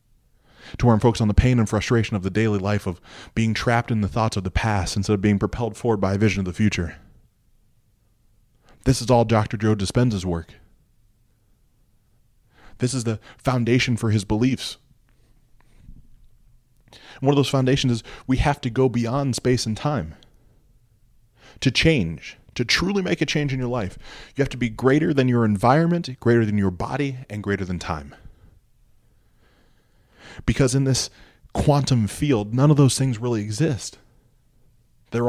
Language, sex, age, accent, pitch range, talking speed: English, male, 20-39, American, 105-125 Hz, 165 wpm